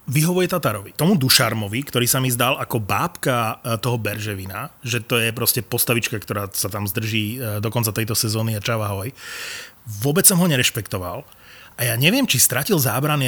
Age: 30-49